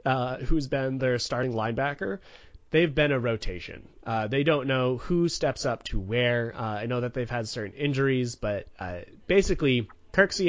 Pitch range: 105-135 Hz